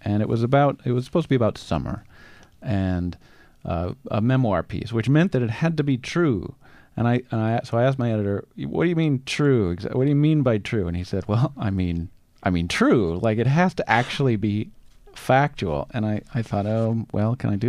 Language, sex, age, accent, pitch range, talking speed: English, male, 40-59, American, 95-125 Hz, 230 wpm